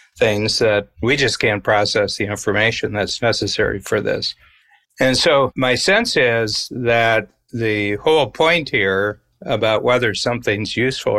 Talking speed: 140 wpm